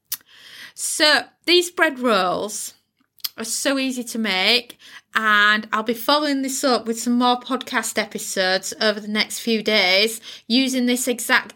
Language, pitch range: English, 205-235 Hz